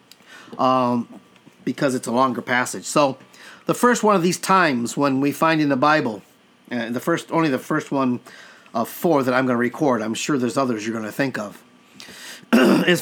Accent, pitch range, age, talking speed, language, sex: American, 135-175 Hz, 50-69, 200 wpm, English, male